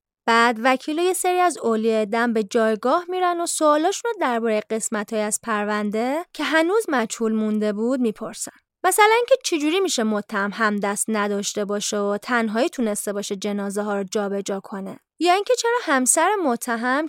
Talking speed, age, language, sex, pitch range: 160 wpm, 20-39, Persian, female, 220-335 Hz